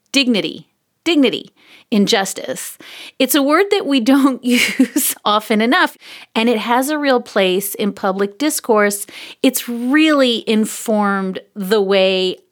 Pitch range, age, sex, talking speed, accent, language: 205-275 Hz, 40-59, female, 125 wpm, American, English